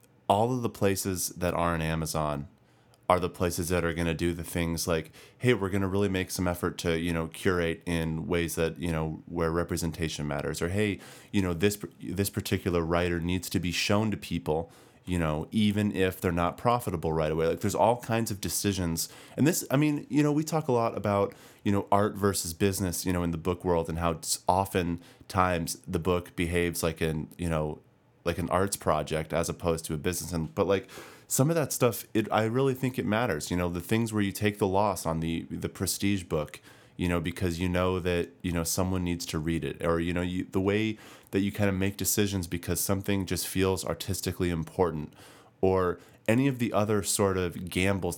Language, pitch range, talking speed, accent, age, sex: English, 85-100 Hz, 220 wpm, American, 30-49, male